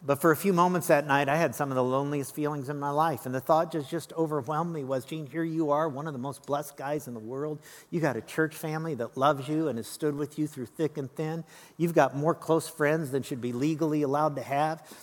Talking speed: 270 wpm